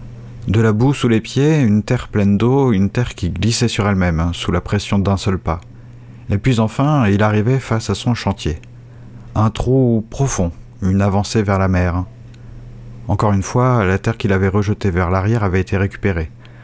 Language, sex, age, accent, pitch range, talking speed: French, male, 50-69, French, 100-120 Hz, 190 wpm